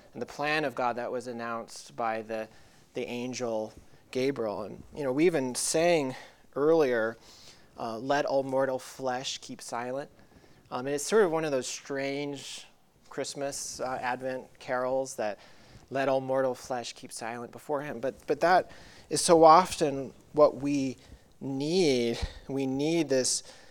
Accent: American